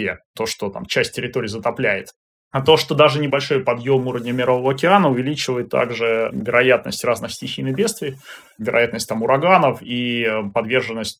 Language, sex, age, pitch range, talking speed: Russian, male, 20-39, 115-155 Hz, 140 wpm